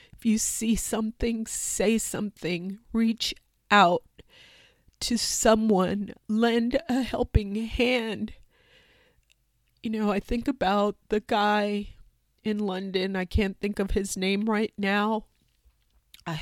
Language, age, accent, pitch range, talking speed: English, 40-59, American, 195-235 Hz, 115 wpm